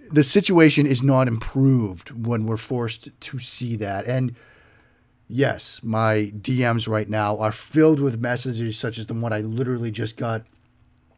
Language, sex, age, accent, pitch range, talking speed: English, male, 40-59, American, 115-140 Hz, 155 wpm